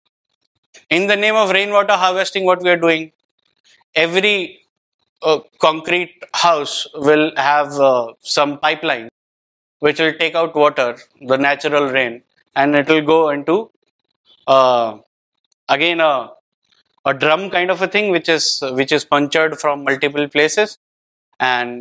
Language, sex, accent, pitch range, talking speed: English, male, Indian, 140-180 Hz, 135 wpm